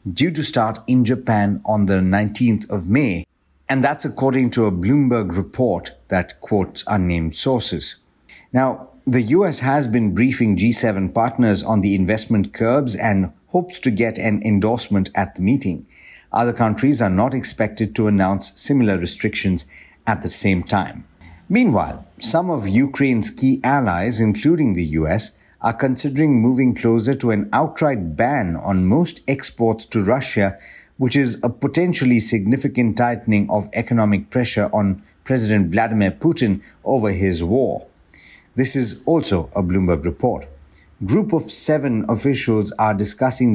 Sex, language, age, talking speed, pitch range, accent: male, English, 50-69, 145 wpm, 100-125 Hz, Indian